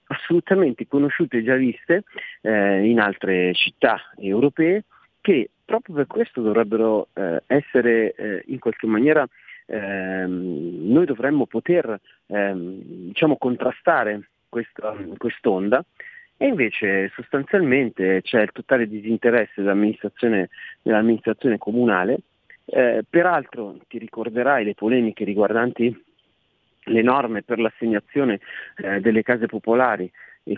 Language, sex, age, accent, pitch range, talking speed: Italian, male, 40-59, native, 100-120 Hz, 110 wpm